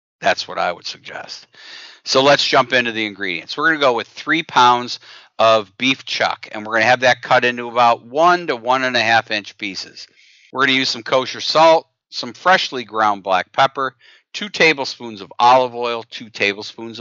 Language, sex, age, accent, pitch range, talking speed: English, male, 50-69, American, 110-130 Hz, 200 wpm